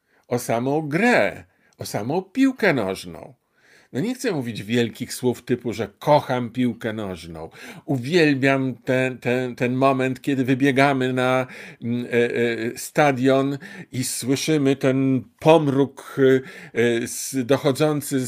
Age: 50-69